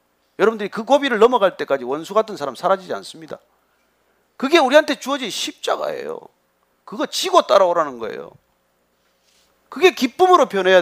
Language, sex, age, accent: Korean, male, 40-59, native